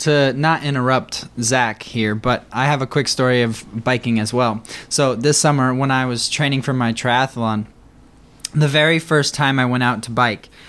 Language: English